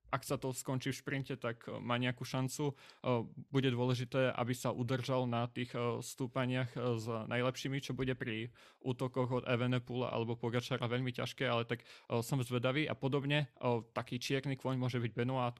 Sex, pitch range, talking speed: male, 120-130 Hz, 160 wpm